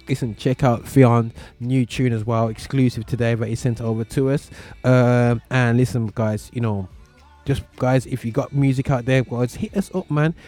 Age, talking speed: 20-39, 195 wpm